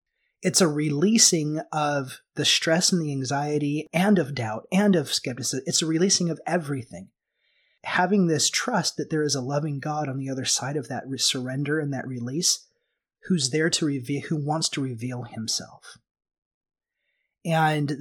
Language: English